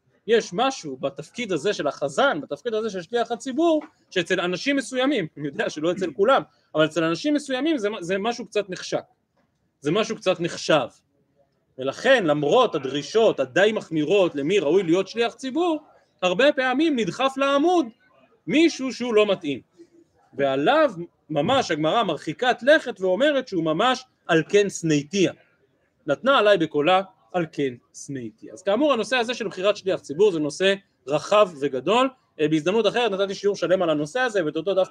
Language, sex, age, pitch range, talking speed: Hebrew, male, 30-49, 155-245 Hz, 155 wpm